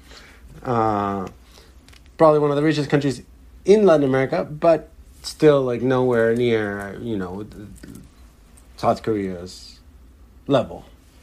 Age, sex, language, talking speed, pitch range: 40-59, male, English, 105 wpm, 90-120 Hz